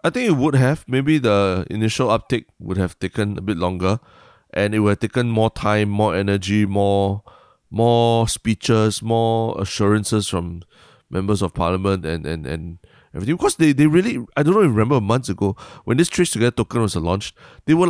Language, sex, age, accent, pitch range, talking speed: English, male, 20-39, Malaysian, 95-115 Hz, 195 wpm